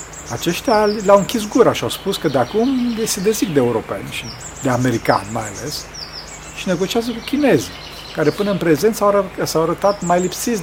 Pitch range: 120-190 Hz